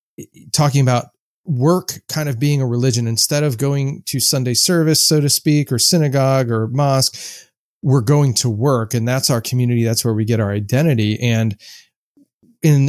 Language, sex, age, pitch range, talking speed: English, male, 30-49, 115-145 Hz, 170 wpm